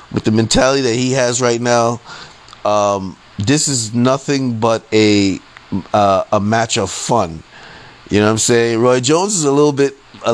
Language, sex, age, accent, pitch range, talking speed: English, male, 30-49, American, 115-145 Hz, 180 wpm